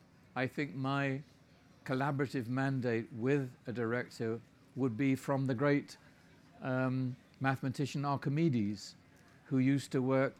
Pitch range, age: 115-135 Hz, 50-69